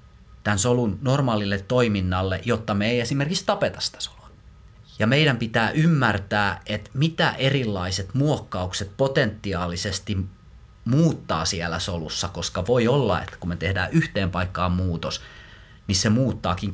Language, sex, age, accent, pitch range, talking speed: Finnish, male, 30-49, native, 90-115 Hz, 130 wpm